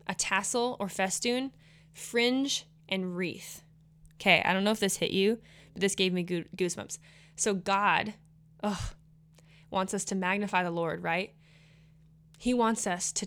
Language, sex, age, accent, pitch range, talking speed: English, female, 20-39, American, 160-195 Hz, 150 wpm